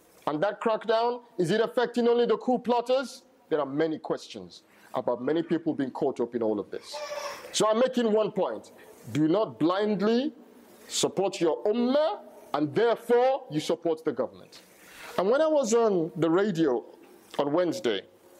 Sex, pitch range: male, 160-225 Hz